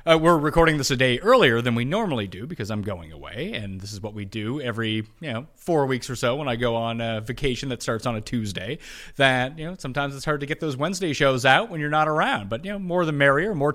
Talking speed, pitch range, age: 270 wpm, 120-165 Hz, 30-49